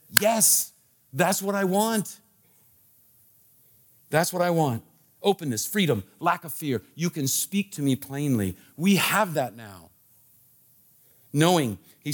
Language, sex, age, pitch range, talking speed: English, male, 50-69, 125-165 Hz, 130 wpm